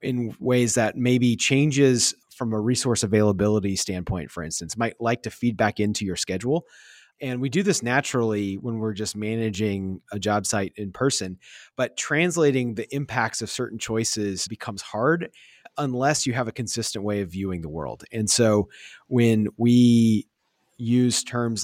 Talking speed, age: 165 wpm, 30-49